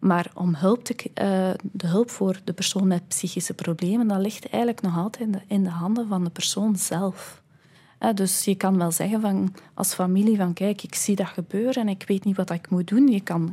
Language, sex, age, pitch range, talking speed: Dutch, female, 20-39, 175-215 Hz, 235 wpm